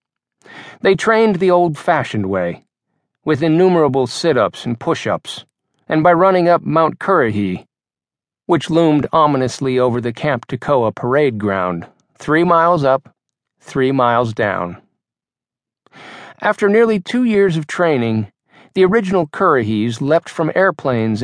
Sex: male